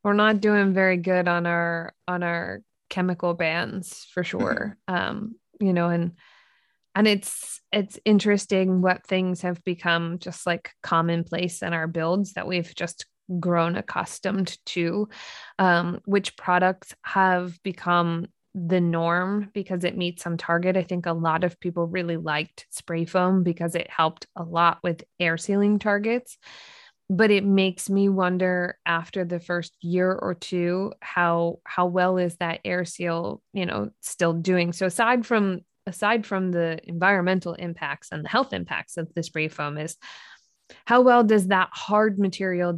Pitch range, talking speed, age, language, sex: 170-195 Hz, 160 wpm, 20-39, English, female